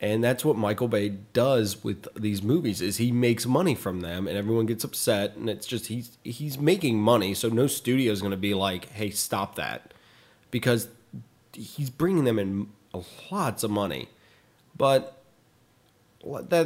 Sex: male